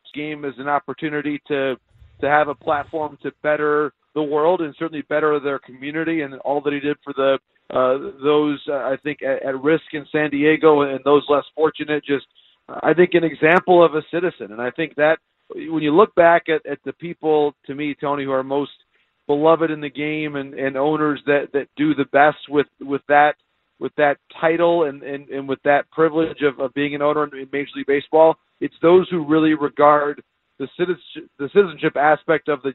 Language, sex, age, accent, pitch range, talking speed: English, male, 40-59, American, 140-155 Hz, 205 wpm